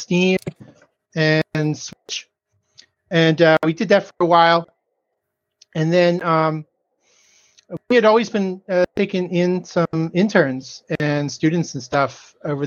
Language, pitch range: English, 145-180 Hz